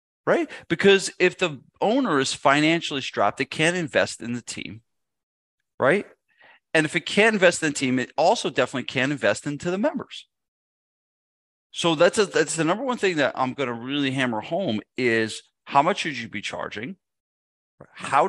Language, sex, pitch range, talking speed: English, male, 105-145 Hz, 170 wpm